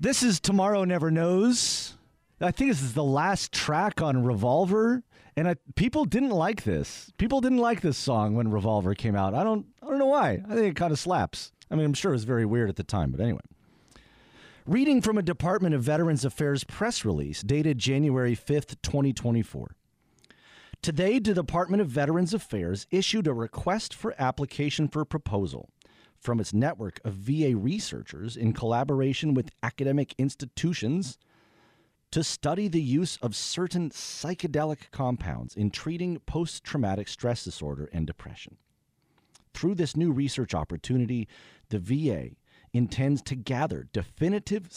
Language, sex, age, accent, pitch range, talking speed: English, male, 40-59, American, 115-175 Hz, 155 wpm